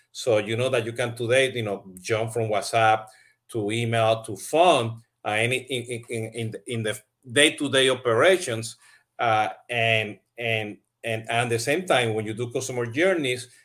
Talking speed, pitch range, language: 180 wpm, 115-140 Hz, Spanish